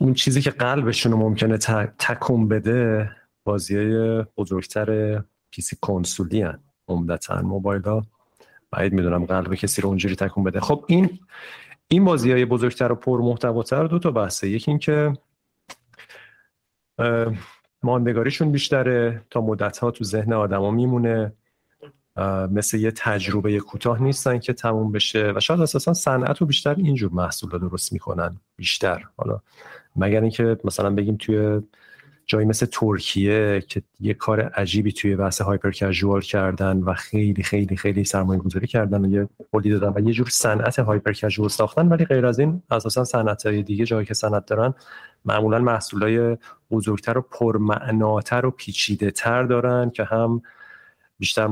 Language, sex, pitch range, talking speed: Persian, male, 100-120 Hz, 145 wpm